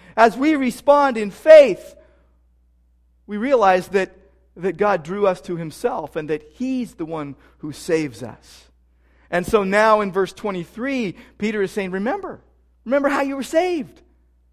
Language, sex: English, male